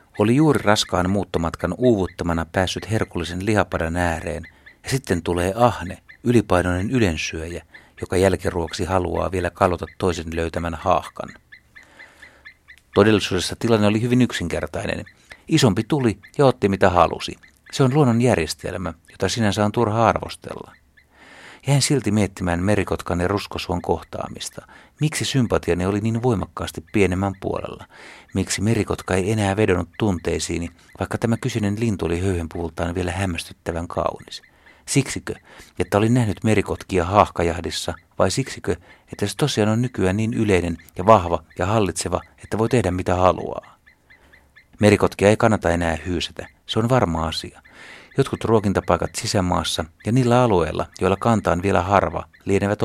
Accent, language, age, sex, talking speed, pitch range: native, Finnish, 60-79, male, 130 wpm, 85-115 Hz